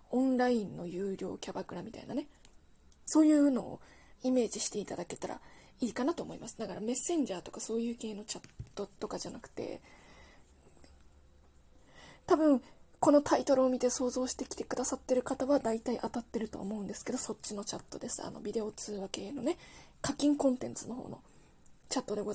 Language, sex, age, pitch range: Japanese, female, 20-39, 200-270 Hz